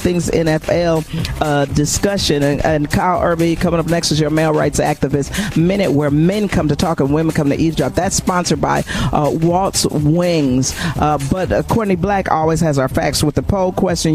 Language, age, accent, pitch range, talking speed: English, 40-59, American, 150-175 Hz, 190 wpm